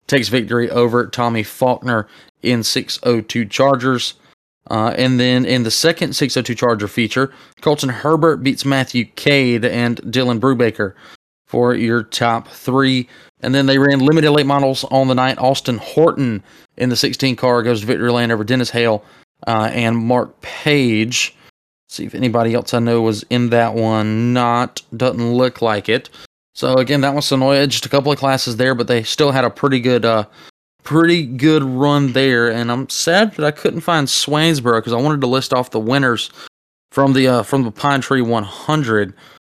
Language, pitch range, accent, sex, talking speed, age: English, 120-140 Hz, American, male, 180 wpm, 20-39